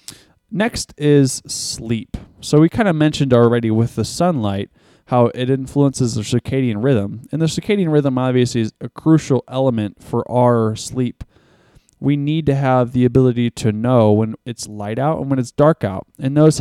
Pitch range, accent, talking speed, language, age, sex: 110-140 Hz, American, 175 wpm, English, 20-39, male